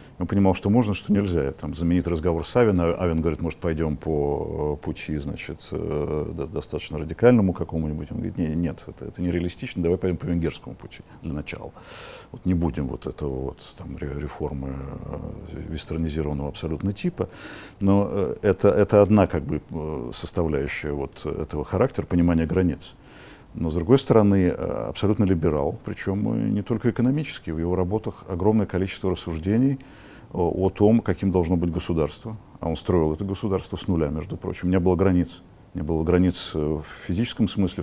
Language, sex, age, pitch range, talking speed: Russian, male, 50-69, 80-100 Hz, 155 wpm